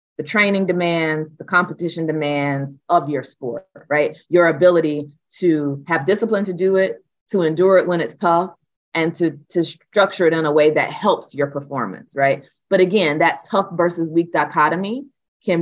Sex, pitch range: female, 140-170 Hz